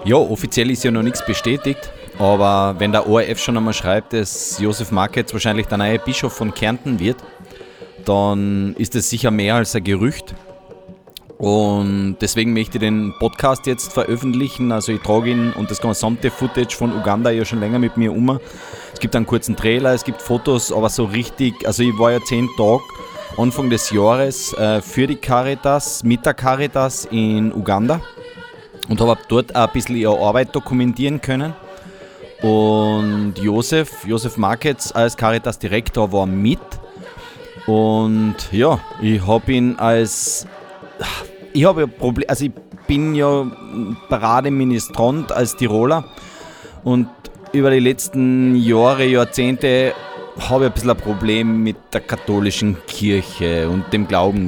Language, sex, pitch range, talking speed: German, male, 105-130 Hz, 150 wpm